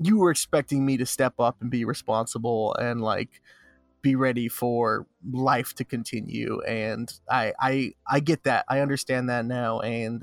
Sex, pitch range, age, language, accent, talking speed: male, 130-165 Hz, 20-39, English, American, 170 wpm